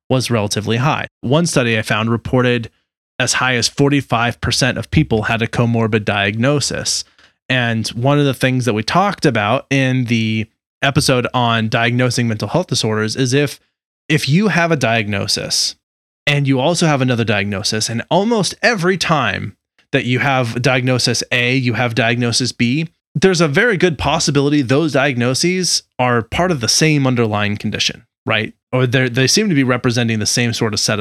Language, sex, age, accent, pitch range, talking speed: English, male, 20-39, American, 115-140 Hz, 170 wpm